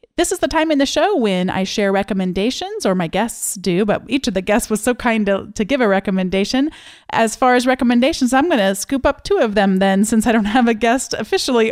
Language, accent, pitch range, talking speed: English, American, 190-245 Hz, 245 wpm